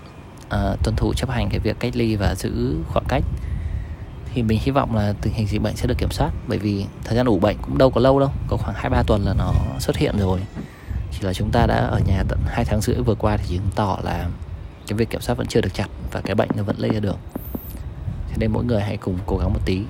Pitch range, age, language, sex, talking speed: 95-120 Hz, 20-39, Vietnamese, male, 270 wpm